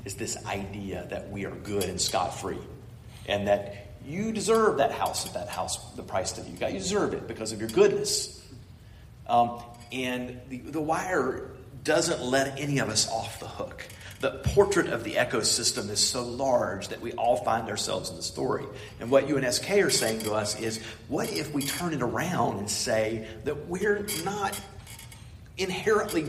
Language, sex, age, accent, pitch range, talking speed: English, male, 40-59, American, 110-160 Hz, 180 wpm